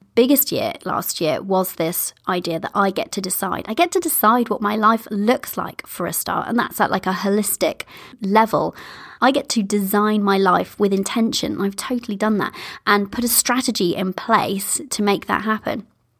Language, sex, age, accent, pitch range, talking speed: English, female, 30-49, British, 195-245 Hz, 195 wpm